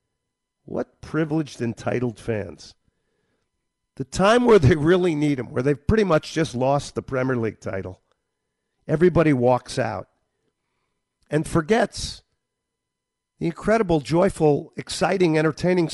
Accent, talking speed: American, 115 wpm